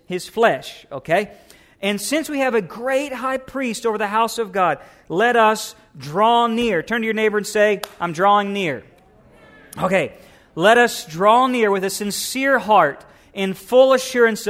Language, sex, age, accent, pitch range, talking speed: English, male, 40-59, American, 175-220 Hz, 170 wpm